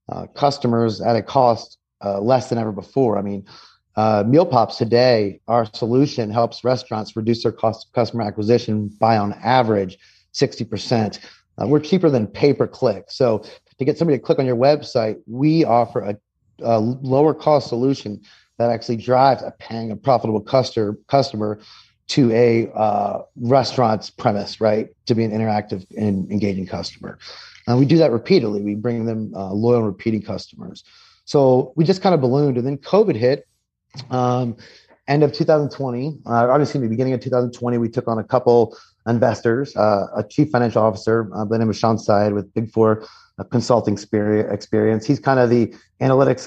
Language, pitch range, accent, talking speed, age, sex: English, 110-130 Hz, American, 175 wpm, 30-49, male